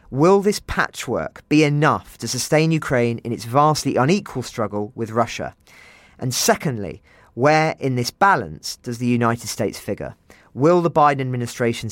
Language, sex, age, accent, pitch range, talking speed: English, male, 40-59, British, 110-140 Hz, 150 wpm